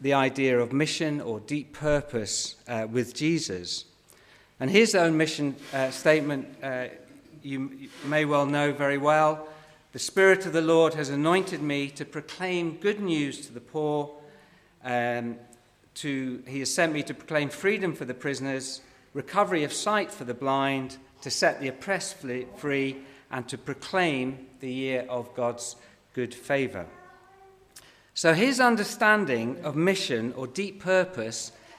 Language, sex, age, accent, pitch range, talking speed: English, male, 50-69, British, 130-165 Hz, 150 wpm